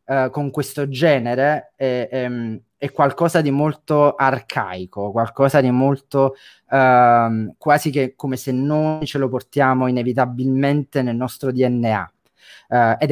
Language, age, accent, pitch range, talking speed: Italian, 30-49, native, 115-140 Hz, 130 wpm